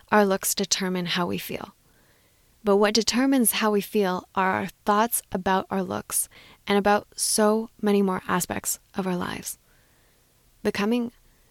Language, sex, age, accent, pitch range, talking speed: English, female, 20-39, American, 185-210 Hz, 145 wpm